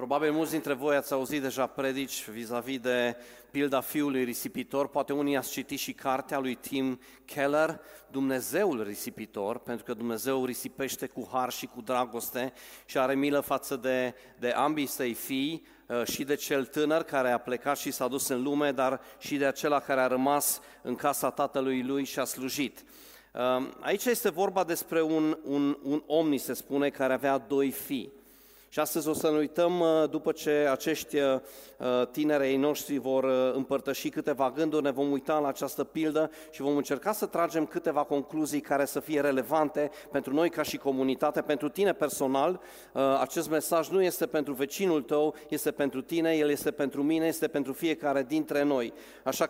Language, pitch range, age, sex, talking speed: Romanian, 135-155 Hz, 40-59, male, 175 wpm